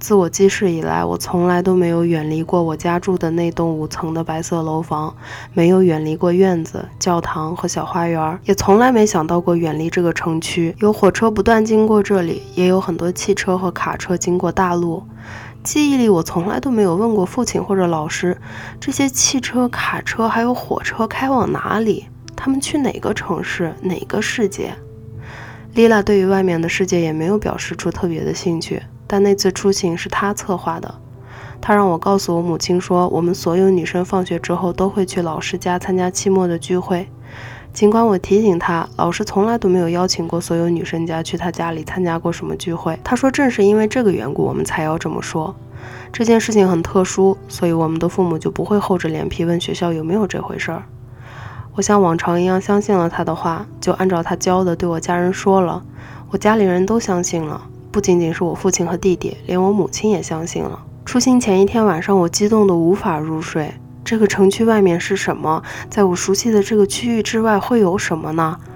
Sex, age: female, 20-39